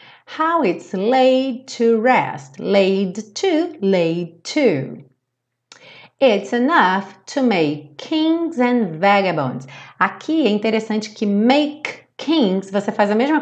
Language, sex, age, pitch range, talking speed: Portuguese, female, 30-49, 170-245 Hz, 115 wpm